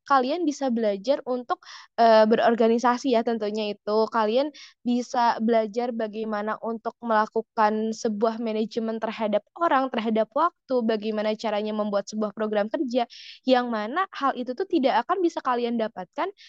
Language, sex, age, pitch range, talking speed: Indonesian, female, 20-39, 230-270 Hz, 135 wpm